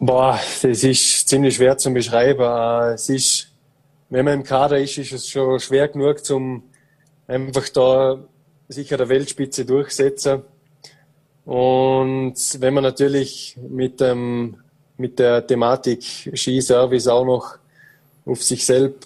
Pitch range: 125-140 Hz